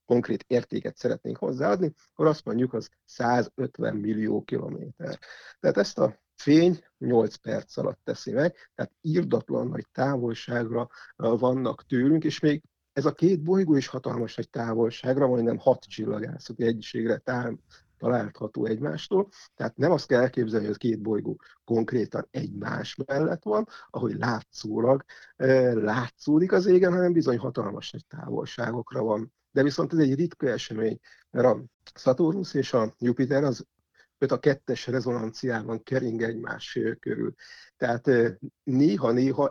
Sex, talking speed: male, 135 wpm